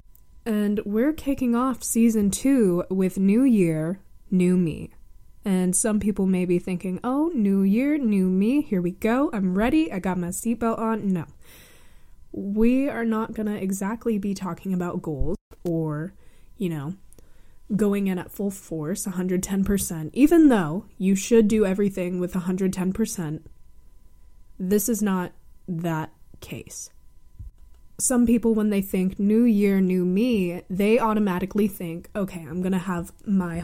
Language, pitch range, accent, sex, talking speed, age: English, 175-220 Hz, American, female, 150 wpm, 20-39